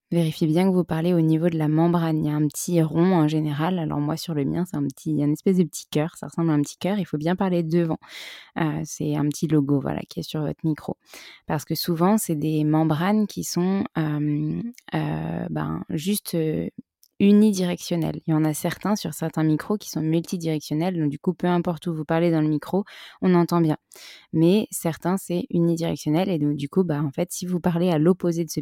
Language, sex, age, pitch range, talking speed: French, female, 20-39, 155-185 Hz, 235 wpm